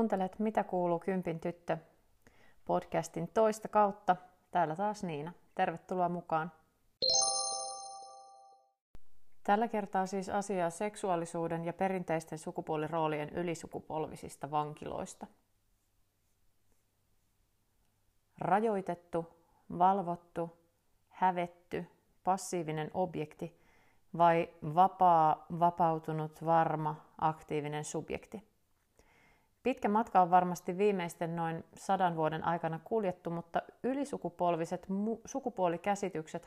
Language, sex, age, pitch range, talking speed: Finnish, female, 30-49, 165-195 Hz, 75 wpm